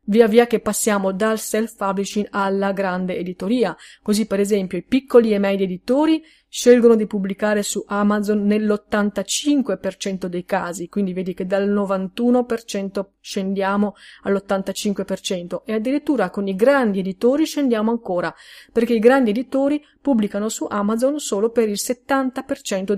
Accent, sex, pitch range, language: native, female, 195-255 Hz, Italian